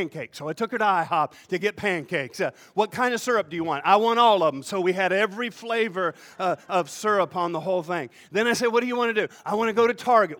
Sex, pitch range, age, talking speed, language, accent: male, 180-235 Hz, 40-59, 285 wpm, English, American